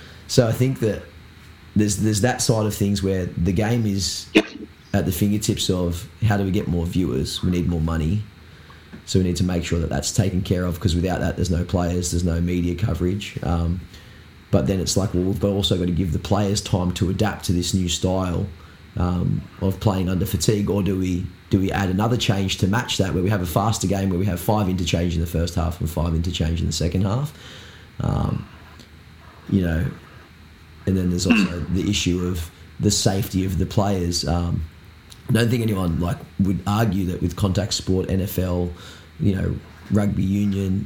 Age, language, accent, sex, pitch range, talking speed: 20-39, English, Australian, male, 85-100 Hz, 205 wpm